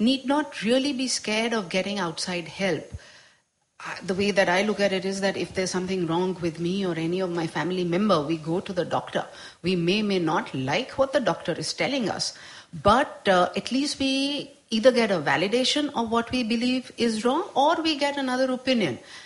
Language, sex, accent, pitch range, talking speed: English, female, Indian, 180-260 Hz, 205 wpm